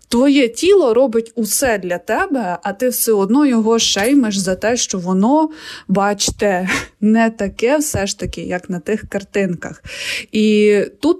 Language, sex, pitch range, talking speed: Ukrainian, female, 185-225 Hz, 150 wpm